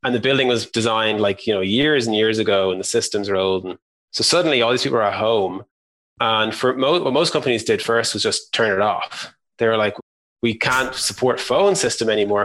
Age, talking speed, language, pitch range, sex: 20-39, 230 wpm, English, 105-125 Hz, male